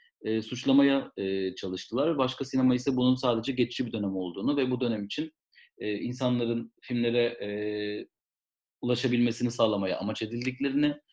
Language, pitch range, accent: Turkish, 110-145 Hz, native